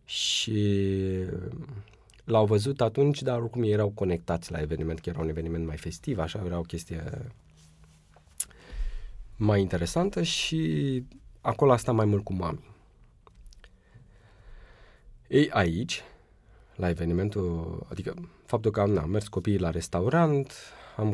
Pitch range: 95-125 Hz